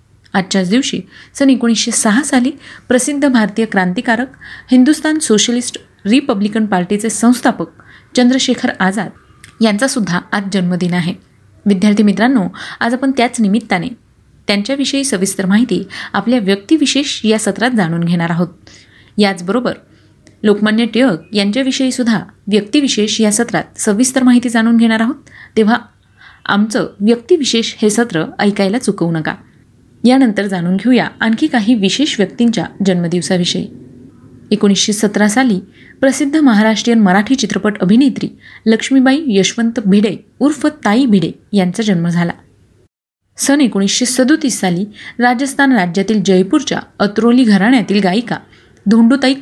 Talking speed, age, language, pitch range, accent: 110 wpm, 30-49, Marathi, 195-250 Hz, native